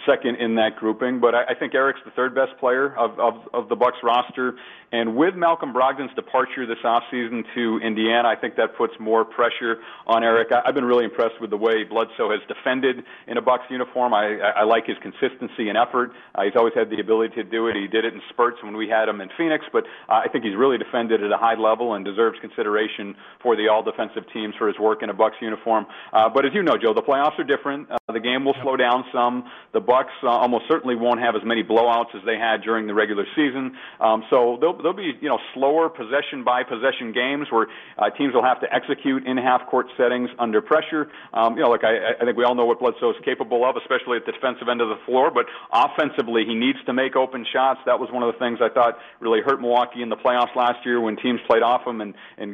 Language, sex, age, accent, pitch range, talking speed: English, male, 40-59, American, 115-130 Hz, 250 wpm